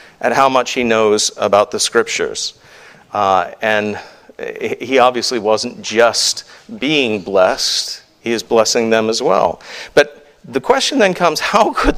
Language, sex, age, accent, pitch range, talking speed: English, male, 50-69, American, 120-160 Hz, 145 wpm